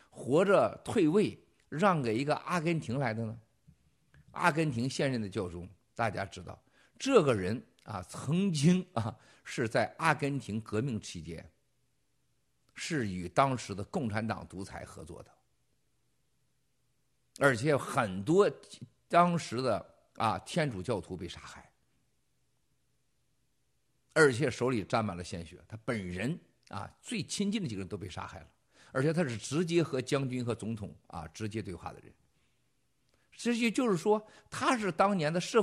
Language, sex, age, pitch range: Chinese, male, 50-69, 100-155 Hz